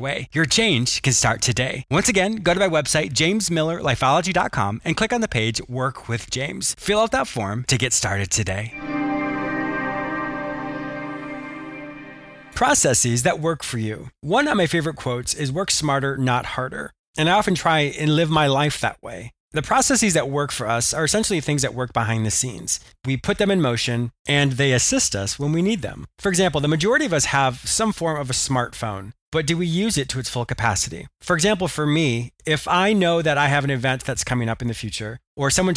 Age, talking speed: 30-49, 205 wpm